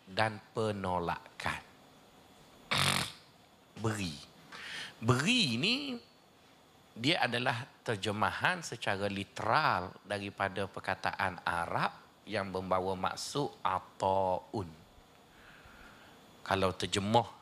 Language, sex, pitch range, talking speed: Malay, male, 95-115 Hz, 65 wpm